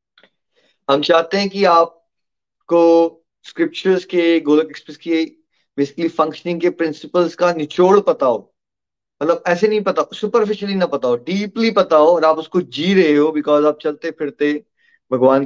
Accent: native